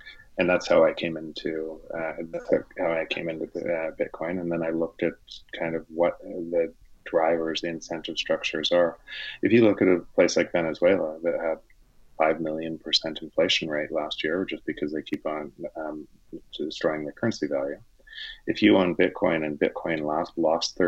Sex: male